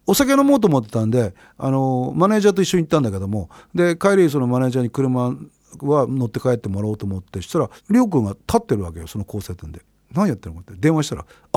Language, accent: Japanese, native